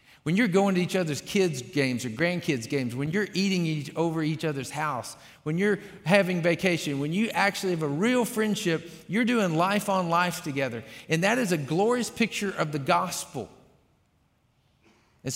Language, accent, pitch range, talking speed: English, American, 115-165 Hz, 175 wpm